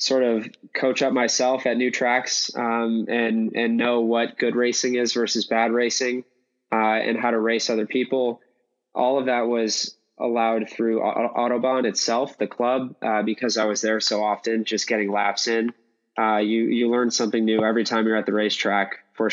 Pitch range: 105-115 Hz